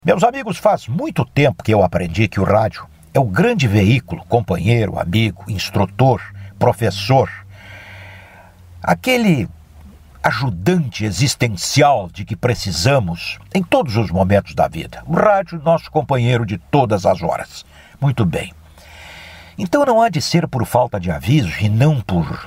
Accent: Brazilian